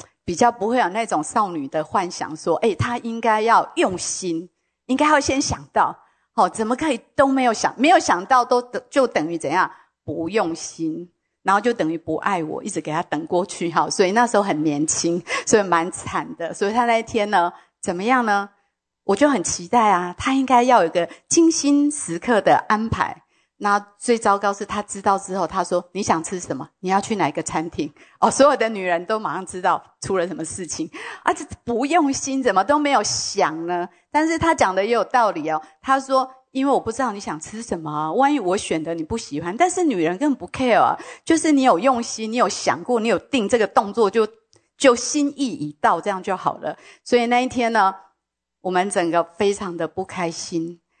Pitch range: 175-255 Hz